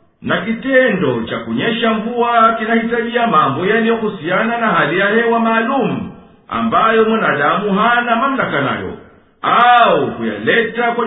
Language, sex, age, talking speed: Swahili, male, 50-69, 125 wpm